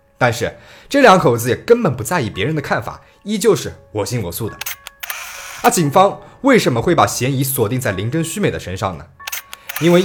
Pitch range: 110-170 Hz